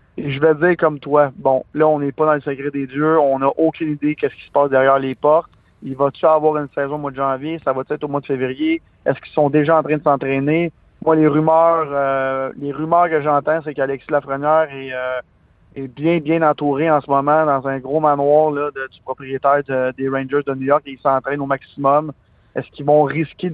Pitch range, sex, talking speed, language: 135-160 Hz, male, 240 wpm, French